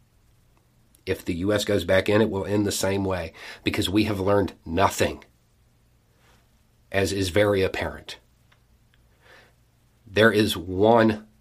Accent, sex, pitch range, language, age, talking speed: American, male, 95-115 Hz, English, 40-59, 125 wpm